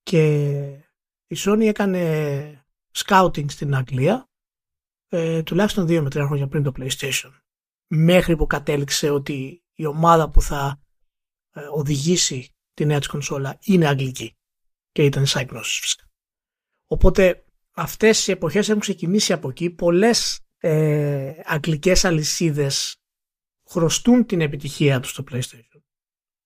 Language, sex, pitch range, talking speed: Greek, male, 150-200 Hz, 115 wpm